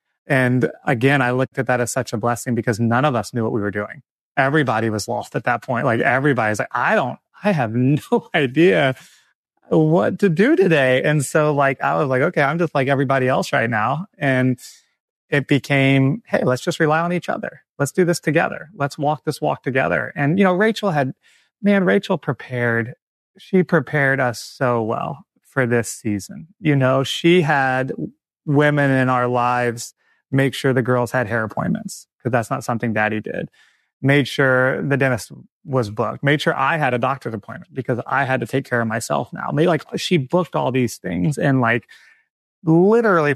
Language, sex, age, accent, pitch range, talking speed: English, male, 30-49, American, 125-155 Hz, 195 wpm